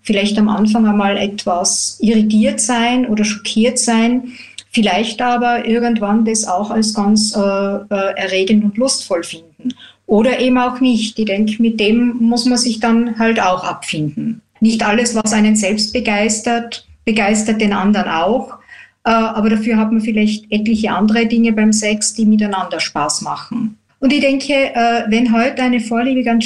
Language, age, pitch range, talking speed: German, 50-69, 210-235 Hz, 160 wpm